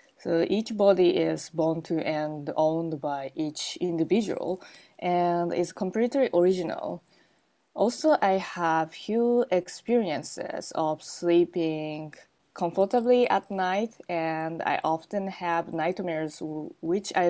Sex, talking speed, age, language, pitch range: female, 110 wpm, 20-39, English, 155-190 Hz